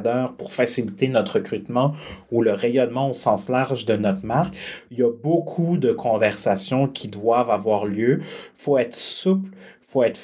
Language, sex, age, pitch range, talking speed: French, male, 30-49, 120-155 Hz, 175 wpm